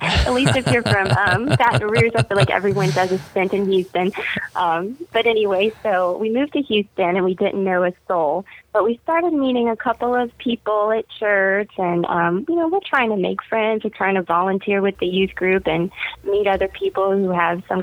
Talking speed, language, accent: 220 wpm, English, American